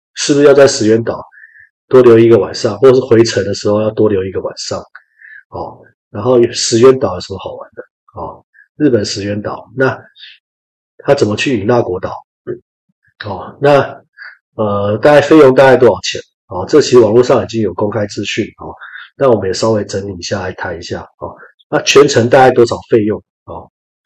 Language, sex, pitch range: Chinese, male, 105-130 Hz